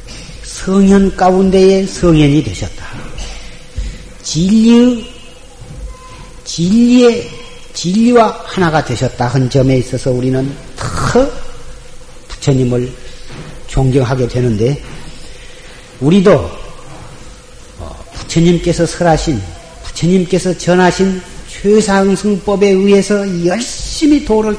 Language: Korean